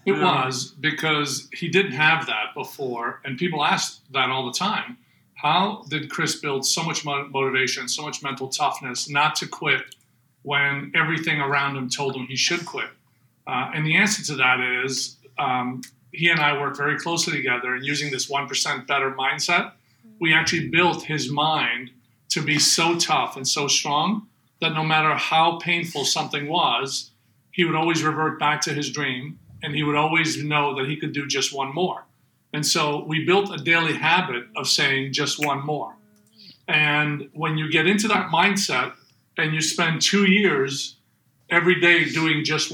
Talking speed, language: 175 wpm, English